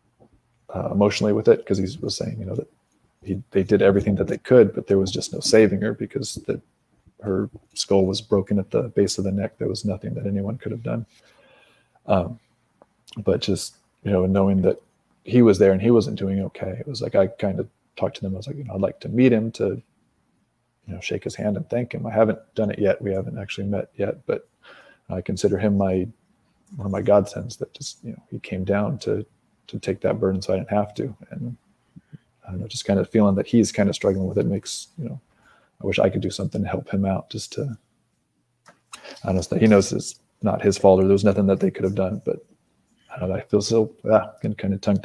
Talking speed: 240 wpm